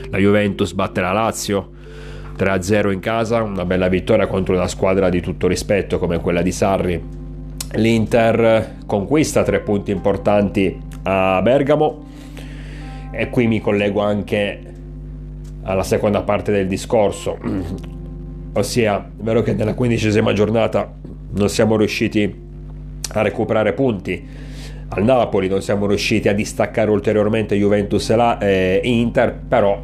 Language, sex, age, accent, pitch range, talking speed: Italian, male, 30-49, native, 95-115 Hz, 125 wpm